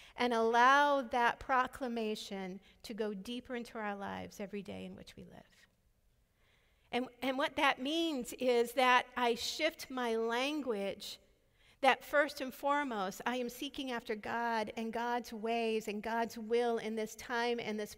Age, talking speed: 50-69, 155 wpm